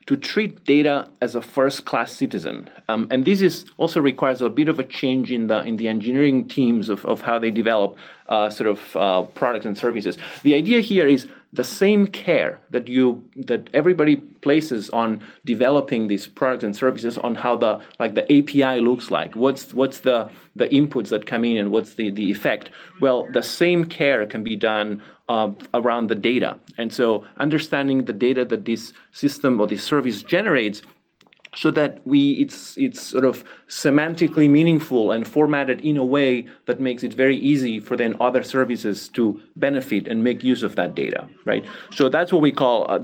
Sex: male